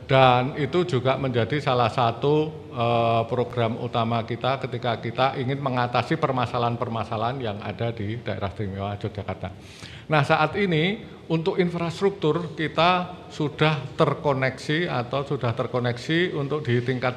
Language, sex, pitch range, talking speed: Indonesian, male, 115-150 Hz, 120 wpm